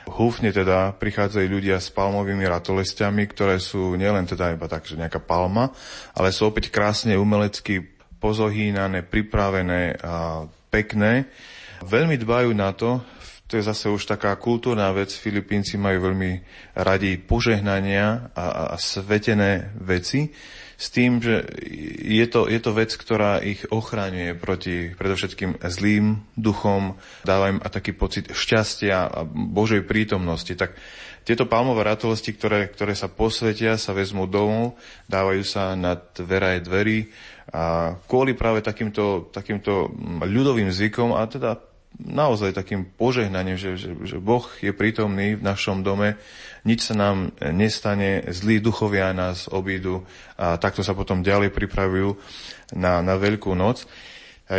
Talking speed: 135 wpm